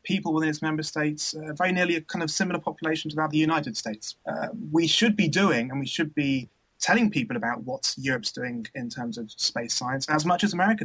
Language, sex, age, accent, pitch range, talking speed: English, male, 30-49, British, 130-165 Hz, 240 wpm